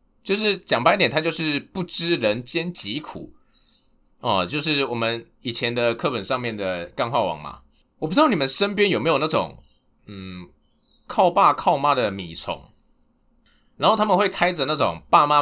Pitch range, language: 120-185 Hz, Chinese